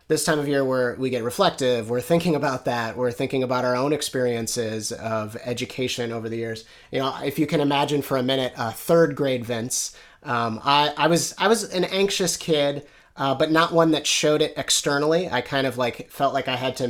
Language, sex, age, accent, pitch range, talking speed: English, male, 30-49, American, 125-155 Hz, 225 wpm